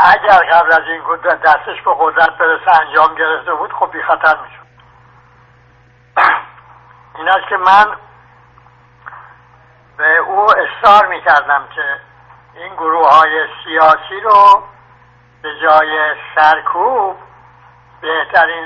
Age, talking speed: 60-79, 105 wpm